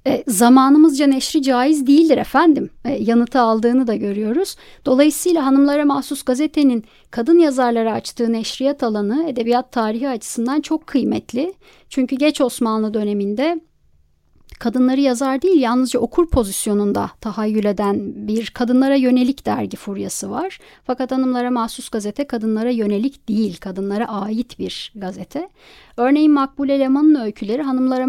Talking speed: 125 wpm